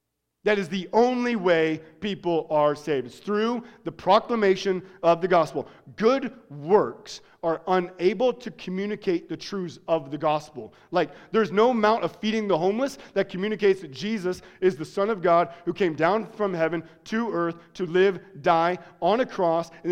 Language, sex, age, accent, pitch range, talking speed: English, male, 40-59, American, 165-220 Hz, 170 wpm